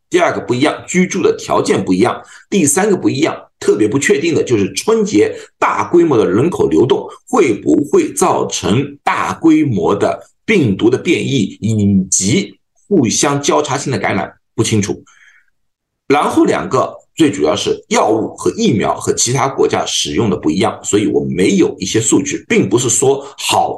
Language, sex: Chinese, male